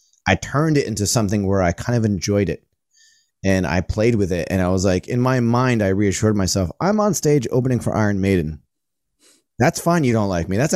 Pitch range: 90-115 Hz